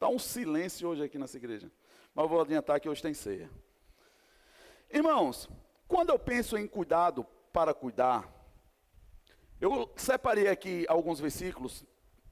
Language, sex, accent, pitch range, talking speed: Portuguese, male, Brazilian, 170-280 Hz, 130 wpm